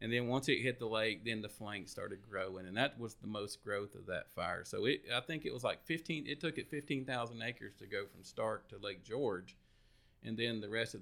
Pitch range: 105-130 Hz